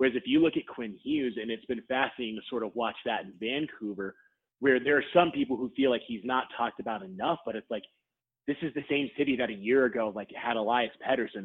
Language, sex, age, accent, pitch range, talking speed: English, male, 30-49, American, 115-140 Hz, 245 wpm